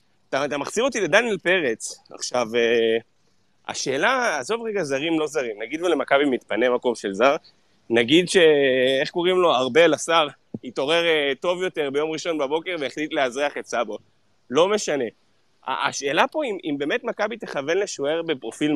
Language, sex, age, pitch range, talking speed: Hebrew, male, 30-49, 135-200 Hz, 145 wpm